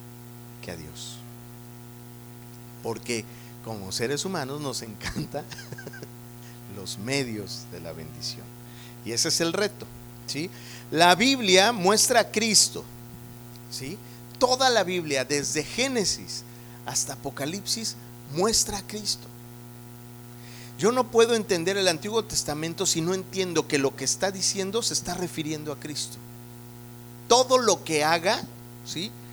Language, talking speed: Spanish, 125 wpm